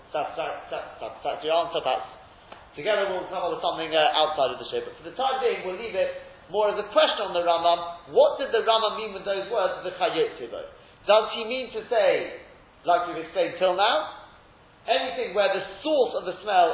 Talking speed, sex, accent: 200 wpm, male, British